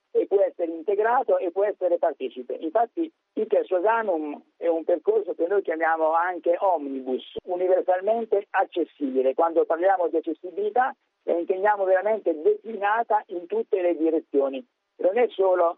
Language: Italian